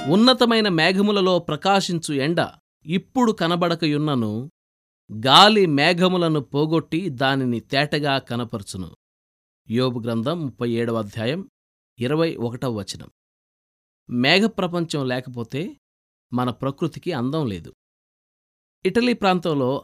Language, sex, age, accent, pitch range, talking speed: Telugu, male, 20-39, native, 115-165 Hz, 80 wpm